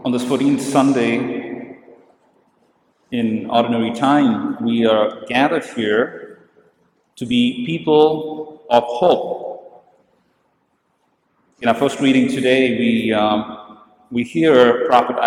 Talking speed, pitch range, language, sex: 100 wpm, 120-165 Hz, English, male